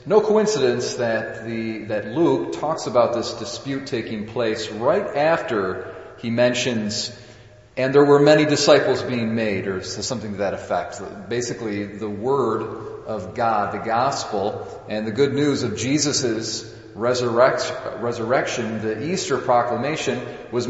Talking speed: 135 wpm